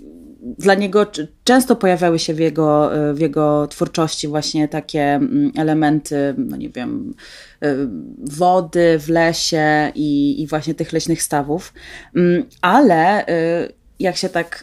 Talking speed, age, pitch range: 120 wpm, 20-39, 155-195 Hz